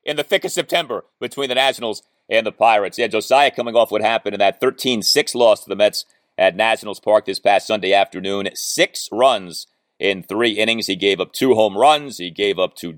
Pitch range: 105-170 Hz